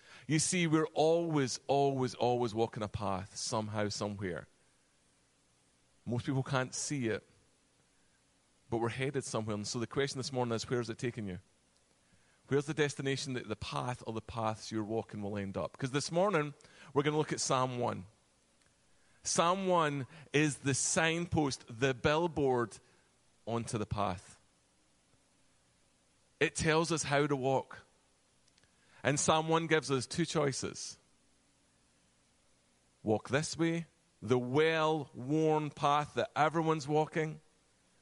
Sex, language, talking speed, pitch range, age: male, English, 140 wpm, 110-150 Hz, 30-49